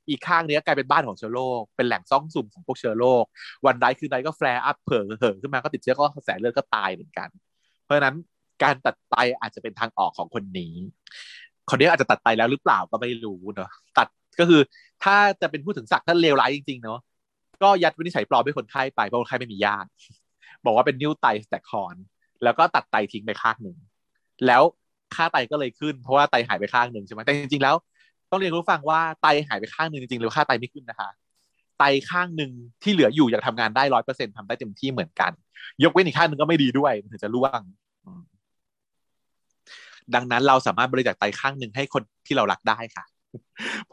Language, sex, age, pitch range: Thai, male, 20-39, 115-155 Hz